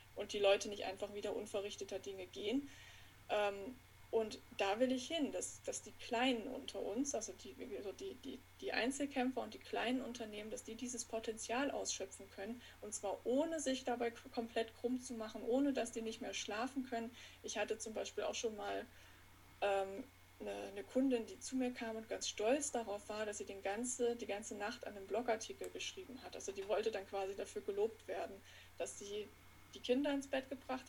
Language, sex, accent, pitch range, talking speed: German, female, German, 210-255 Hz, 185 wpm